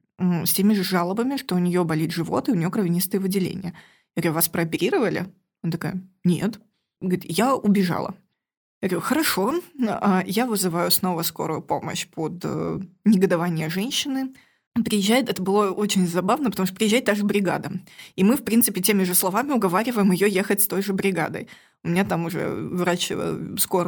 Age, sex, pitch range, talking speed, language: 20-39, female, 180-230 Hz, 170 wpm, Russian